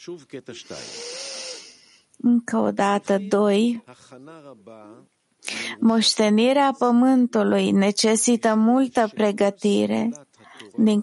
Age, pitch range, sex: 20-39, 195-235 Hz, female